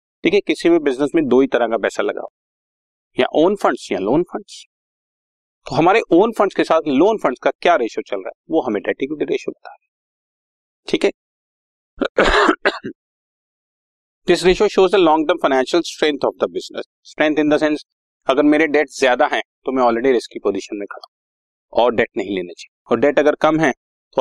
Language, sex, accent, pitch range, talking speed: Hindi, male, native, 120-190 Hz, 170 wpm